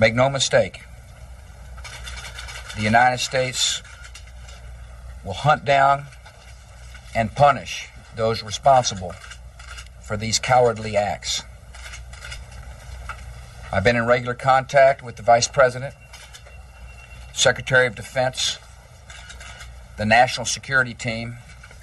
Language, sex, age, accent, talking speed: English, male, 50-69, American, 90 wpm